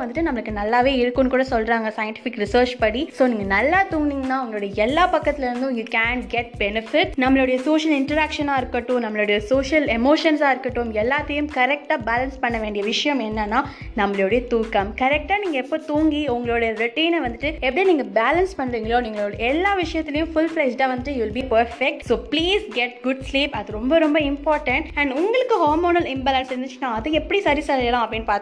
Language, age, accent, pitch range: Tamil, 20-39, native, 235-300 Hz